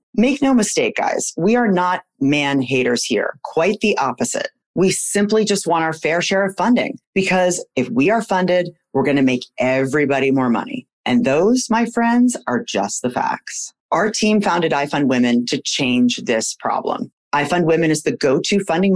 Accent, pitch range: American, 140-205 Hz